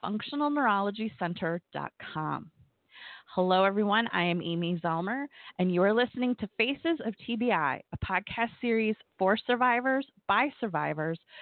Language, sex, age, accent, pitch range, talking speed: English, female, 30-49, American, 185-245 Hz, 115 wpm